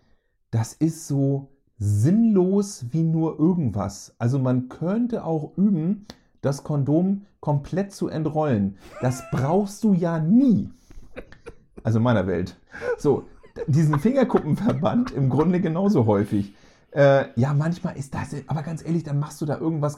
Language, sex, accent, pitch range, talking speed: German, male, German, 110-150 Hz, 140 wpm